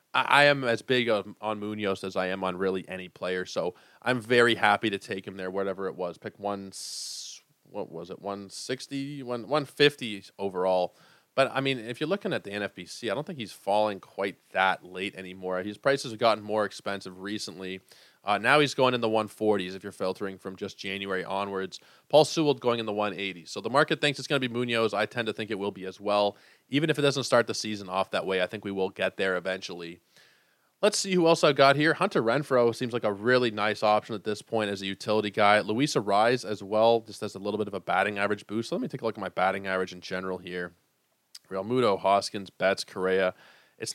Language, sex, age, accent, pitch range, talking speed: English, male, 20-39, American, 95-120 Hz, 225 wpm